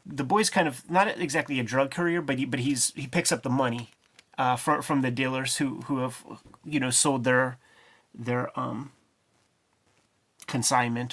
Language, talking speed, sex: English, 180 wpm, male